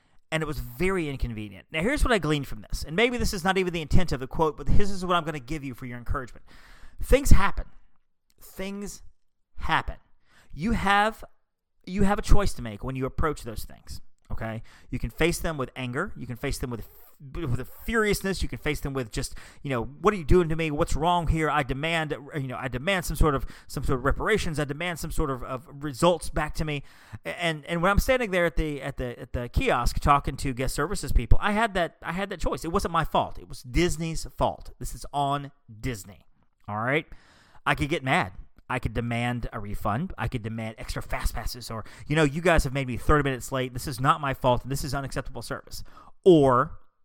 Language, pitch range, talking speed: English, 120-165 Hz, 230 wpm